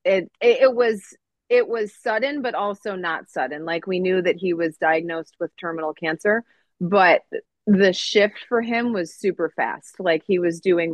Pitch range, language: 165-195 Hz, English